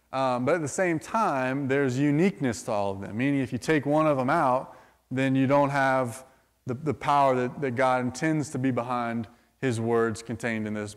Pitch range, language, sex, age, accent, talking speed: 120-145 Hz, English, male, 20-39, American, 215 wpm